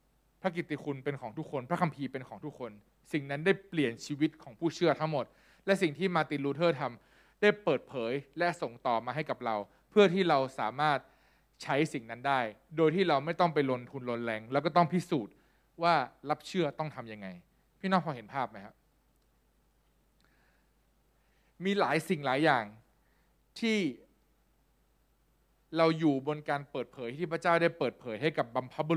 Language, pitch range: Thai, 125-170 Hz